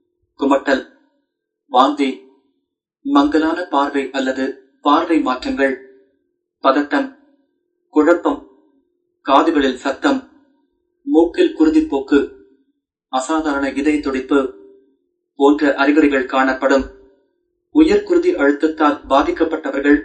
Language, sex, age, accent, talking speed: Tamil, male, 30-49, native, 60 wpm